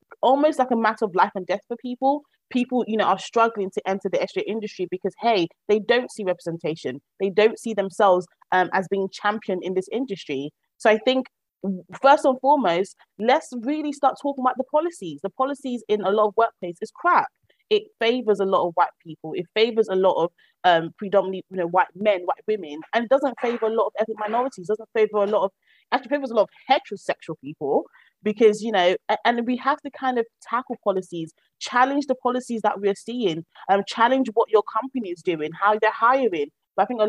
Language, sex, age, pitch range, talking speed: English, female, 20-39, 190-245 Hz, 215 wpm